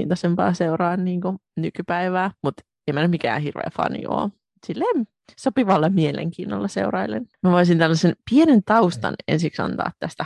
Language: Finnish